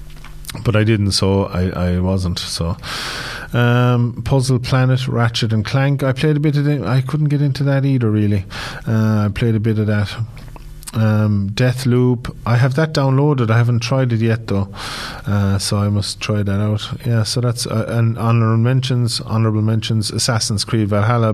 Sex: male